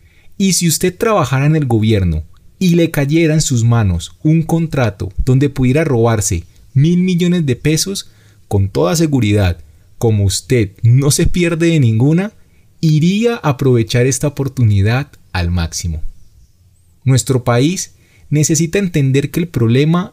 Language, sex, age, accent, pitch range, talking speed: Spanish, male, 30-49, Colombian, 100-150 Hz, 135 wpm